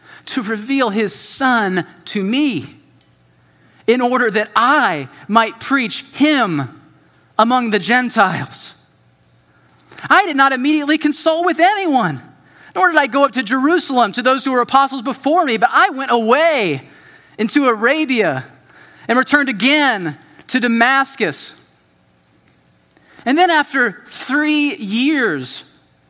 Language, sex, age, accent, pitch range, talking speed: English, male, 30-49, American, 185-275 Hz, 120 wpm